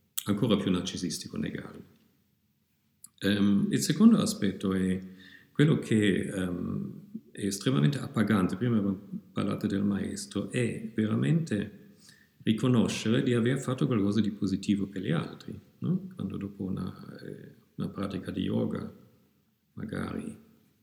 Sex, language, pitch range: male, Italian, 95-115 Hz